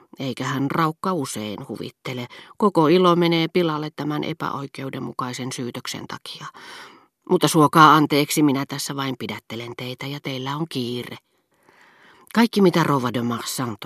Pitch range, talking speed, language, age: 125-170 Hz, 130 wpm, Finnish, 40-59